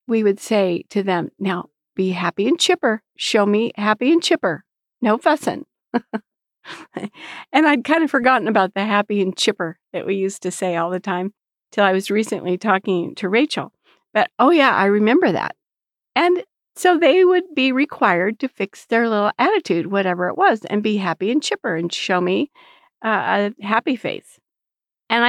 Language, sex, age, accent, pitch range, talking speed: English, female, 50-69, American, 195-270 Hz, 180 wpm